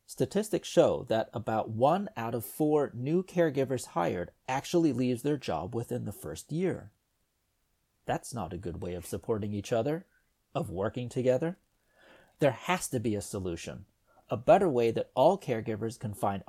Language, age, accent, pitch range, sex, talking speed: English, 40-59, American, 110-155 Hz, male, 165 wpm